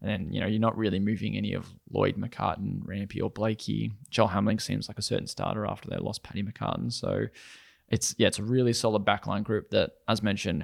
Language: English